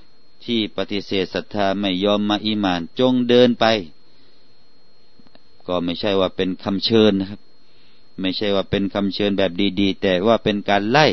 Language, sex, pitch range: Thai, male, 95-120 Hz